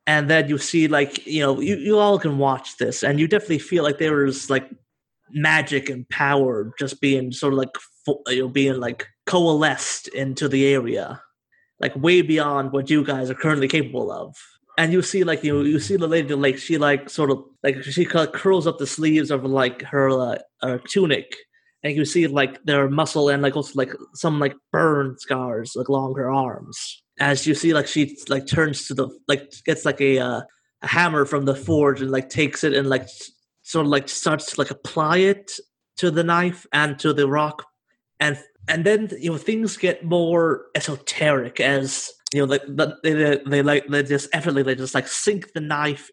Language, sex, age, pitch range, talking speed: English, male, 30-49, 135-160 Hz, 205 wpm